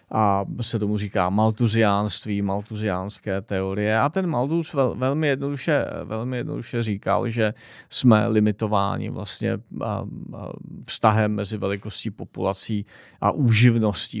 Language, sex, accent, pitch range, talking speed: Czech, male, native, 95-110 Hz, 105 wpm